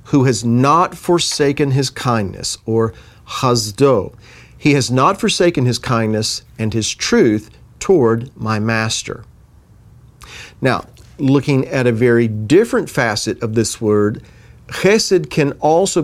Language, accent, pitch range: English, American, 110-140 Hz